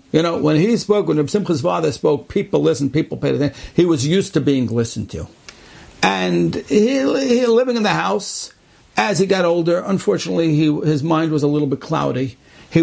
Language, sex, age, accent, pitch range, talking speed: English, male, 60-79, American, 125-170 Hz, 200 wpm